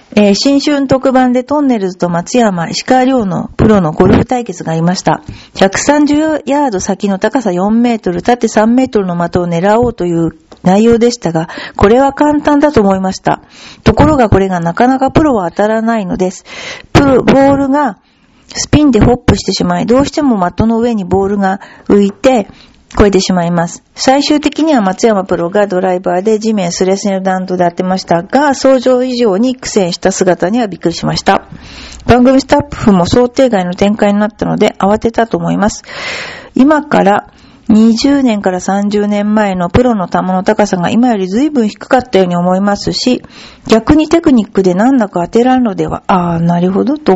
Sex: female